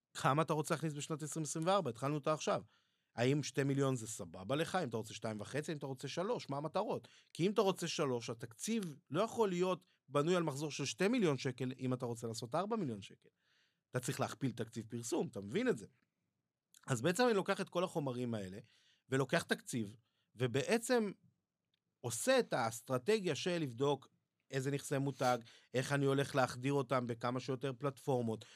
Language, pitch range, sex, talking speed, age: Hebrew, 125-165 Hz, male, 180 wpm, 30-49